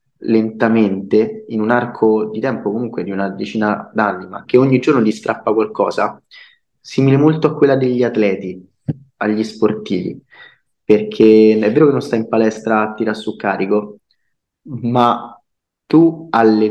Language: Italian